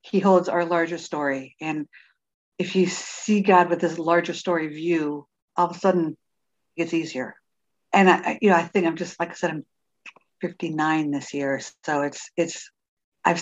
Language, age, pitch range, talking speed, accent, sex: English, 60-79, 150-175 Hz, 180 wpm, American, female